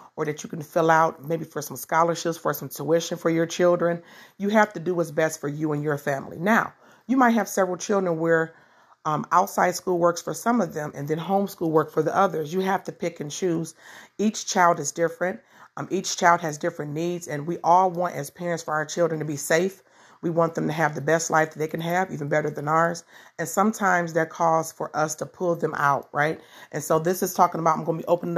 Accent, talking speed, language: American, 245 wpm, English